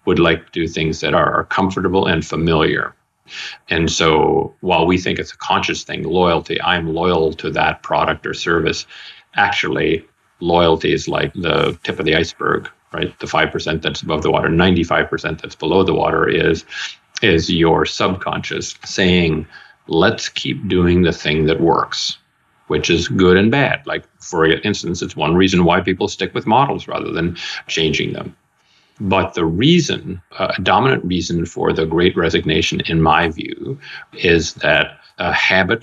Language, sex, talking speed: English, male, 160 wpm